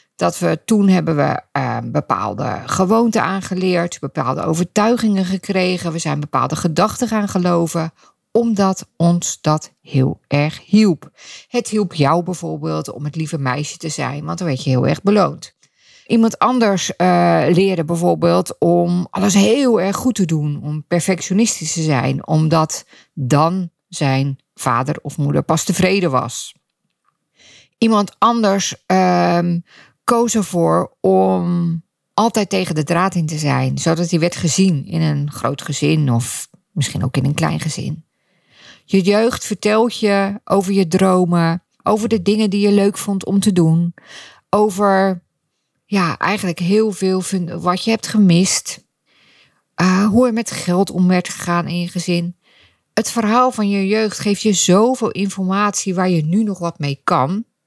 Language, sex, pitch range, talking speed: Dutch, female, 160-200 Hz, 150 wpm